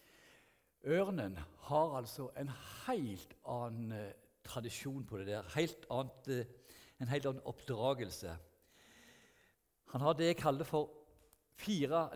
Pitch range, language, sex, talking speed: 110-150 Hz, English, male, 110 wpm